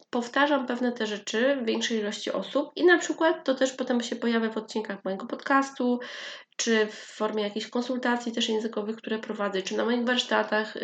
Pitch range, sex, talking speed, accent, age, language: 195-245 Hz, female, 185 wpm, native, 20-39, Polish